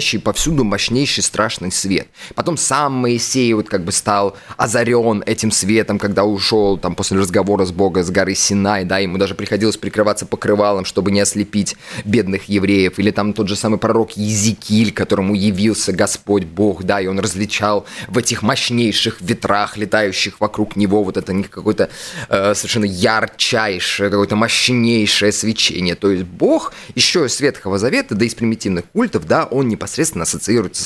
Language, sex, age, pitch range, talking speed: Russian, male, 20-39, 95-115 Hz, 160 wpm